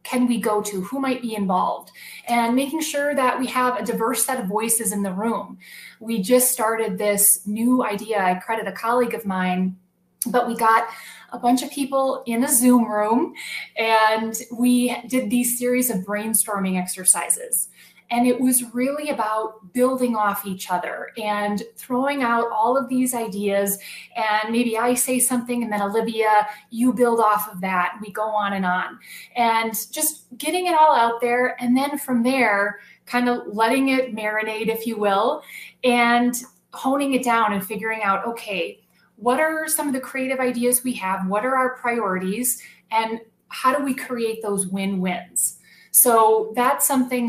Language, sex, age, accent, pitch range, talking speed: English, female, 20-39, American, 210-250 Hz, 175 wpm